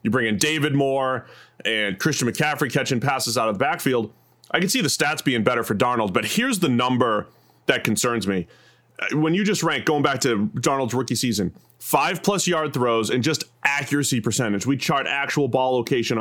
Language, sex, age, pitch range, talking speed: English, male, 30-49, 125-155 Hz, 195 wpm